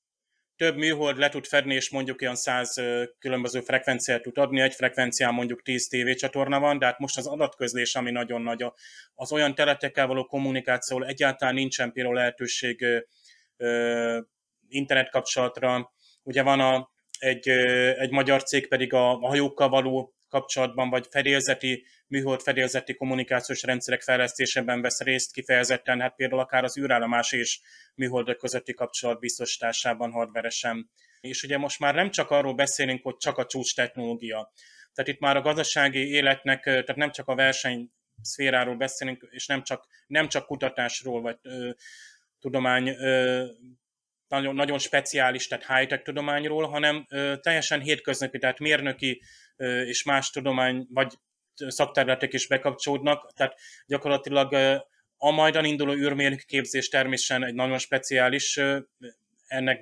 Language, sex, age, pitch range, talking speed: Hungarian, male, 30-49, 125-140 Hz, 140 wpm